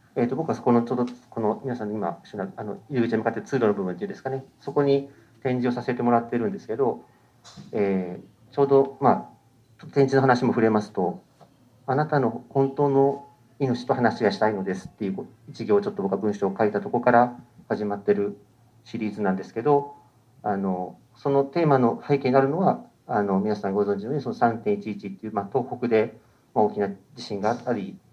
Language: Japanese